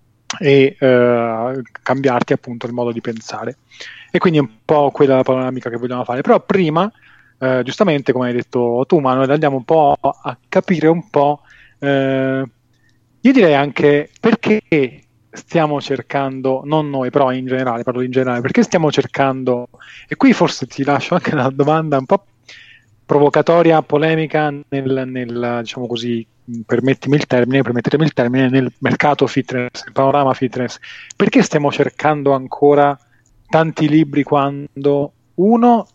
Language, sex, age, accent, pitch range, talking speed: Italian, male, 30-49, native, 125-150 Hz, 150 wpm